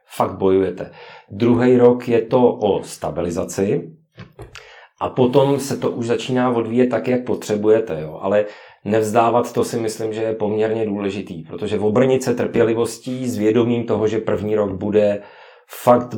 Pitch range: 95-110 Hz